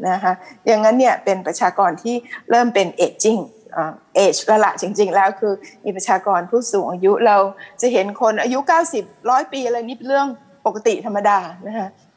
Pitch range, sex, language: 195-240 Hz, female, Thai